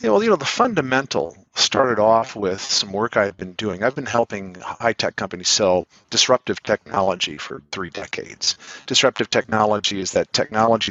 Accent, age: American, 50-69